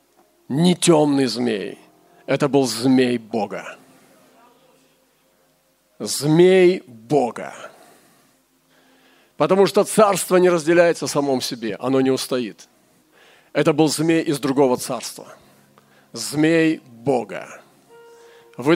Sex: male